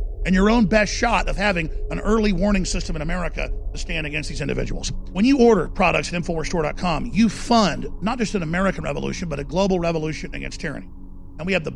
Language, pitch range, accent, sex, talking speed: English, 160-215 Hz, American, male, 210 wpm